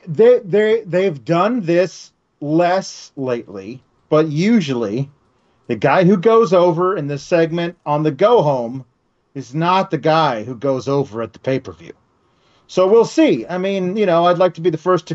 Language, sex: English, male